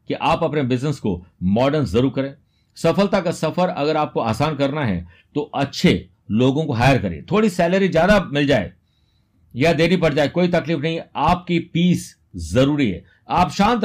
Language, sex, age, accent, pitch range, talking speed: Hindi, male, 50-69, native, 115-165 Hz, 175 wpm